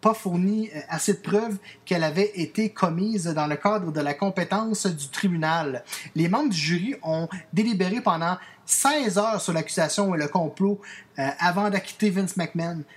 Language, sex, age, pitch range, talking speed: French, male, 30-49, 165-220 Hz, 160 wpm